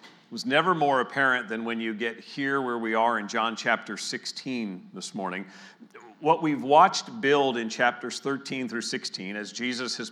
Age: 40-59